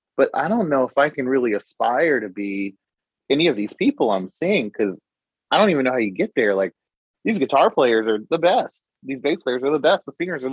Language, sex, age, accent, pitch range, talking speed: English, male, 30-49, American, 105-140 Hz, 240 wpm